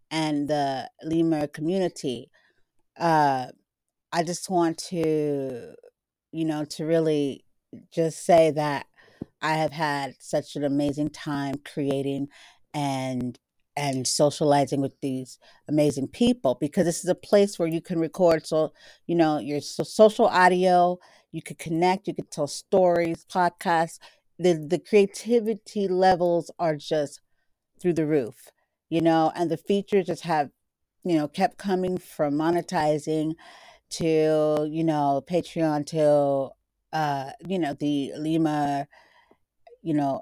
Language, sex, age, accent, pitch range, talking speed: English, female, 40-59, American, 145-170 Hz, 135 wpm